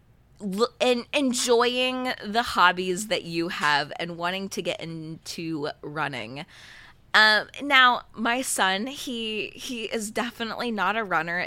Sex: female